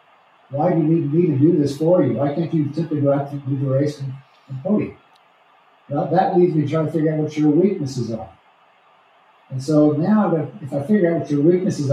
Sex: male